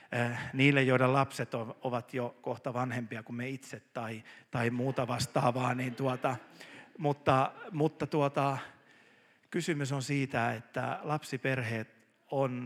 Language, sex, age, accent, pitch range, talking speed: Finnish, male, 50-69, native, 120-145 Hz, 120 wpm